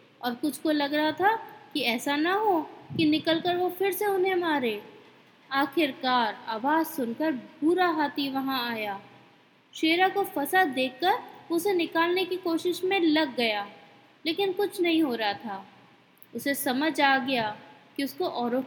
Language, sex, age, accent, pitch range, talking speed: Hindi, female, 20-39, native, 255-350 Hz, 155 wpm